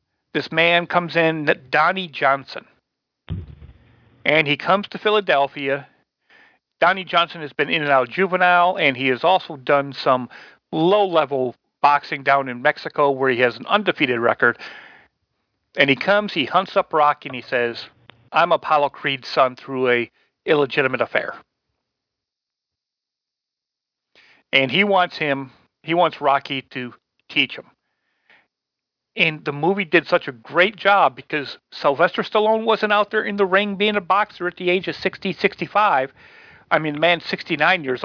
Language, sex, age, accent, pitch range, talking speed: English, male, 40-59, American, 135-185 Hz, 150 wpm